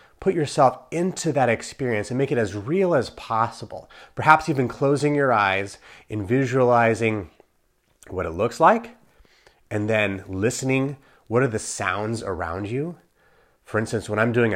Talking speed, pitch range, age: 155 wpm, 105-135 Hz, 30-49